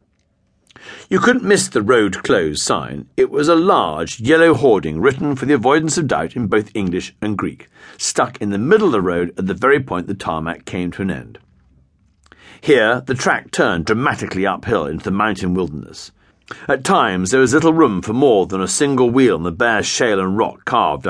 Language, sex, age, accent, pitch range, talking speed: English, male, 50-69, British, 95-140 Hz, 195 wpm